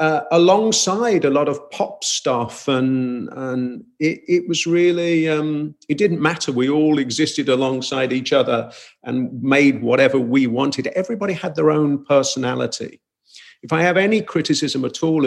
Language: English